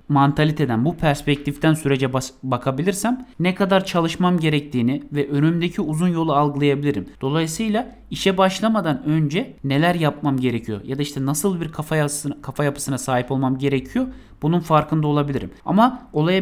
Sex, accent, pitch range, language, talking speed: male, native, 145-185 Hz, Turkish, 145 wpm